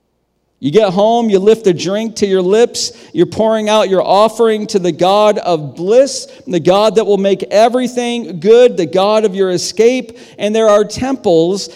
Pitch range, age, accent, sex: 145-230 Hz, 50-69, American, male